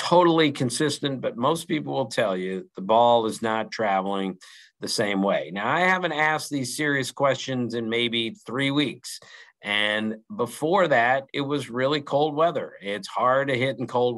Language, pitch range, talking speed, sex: English, 115-145 Hz, 175 wpm, male